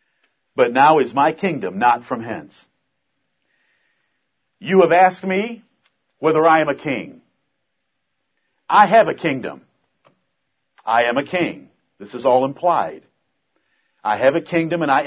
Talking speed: 140 wpm